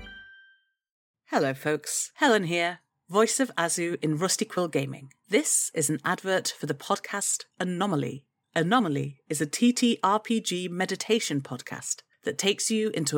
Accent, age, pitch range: British, 40-59, 155-210 Hz